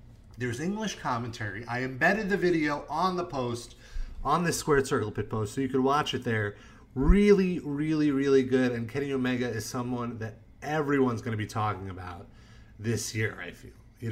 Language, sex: English, male